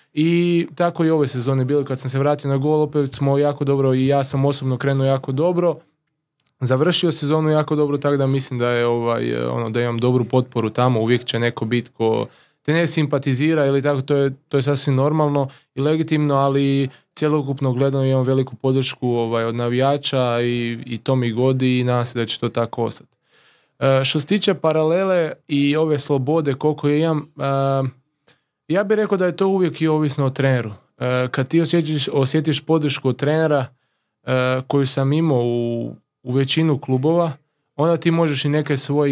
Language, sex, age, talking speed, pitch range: Croatian, male, 20-39, 185 wpm, 130-155 Hz